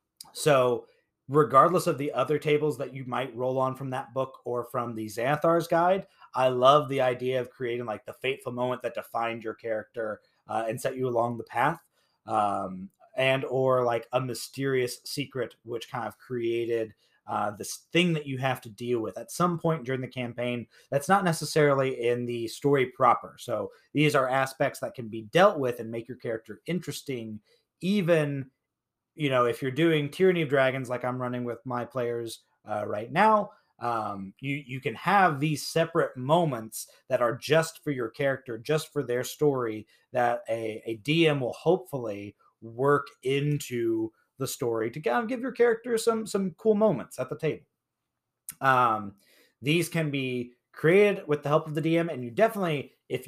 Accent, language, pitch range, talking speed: American, English, 120-155 Hz, 180 wpm